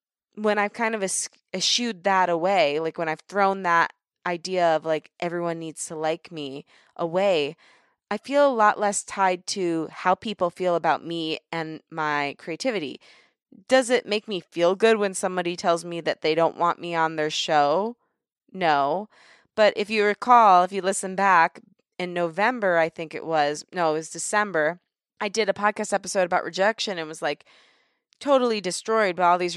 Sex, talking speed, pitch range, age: female, 180 wpm, 170-235 Hz, 20-39